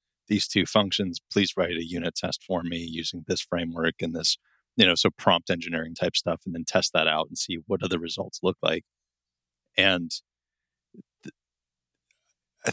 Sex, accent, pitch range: male, American, 75-105 Hz